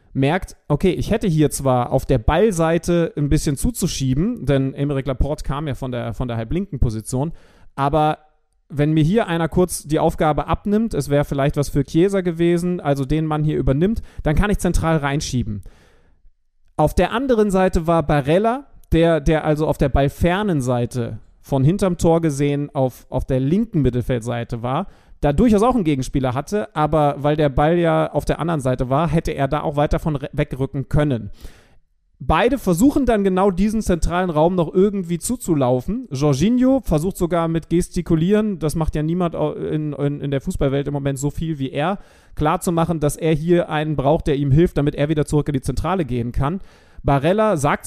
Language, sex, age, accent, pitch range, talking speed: German, male, 30-49, German, 140-175 Hz, 185 wpm